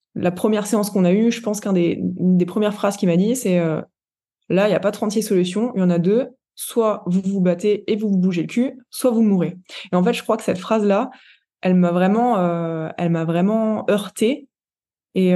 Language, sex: French, female